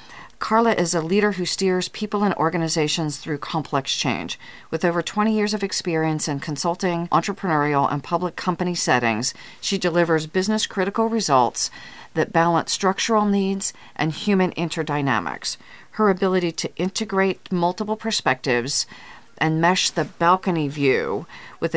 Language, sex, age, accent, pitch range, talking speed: English, female, 40-59, American, 150-185 Hz, 130 wpm